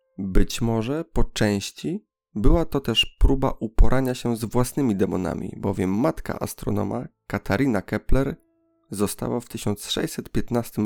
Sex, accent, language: male, native, Polish